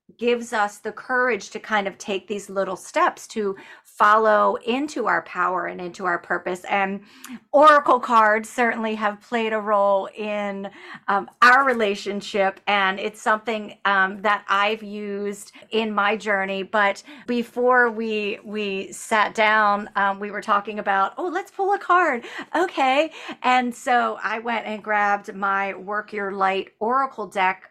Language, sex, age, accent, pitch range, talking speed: English, female, 40-59, American, 195-235 Hz, 155 wpm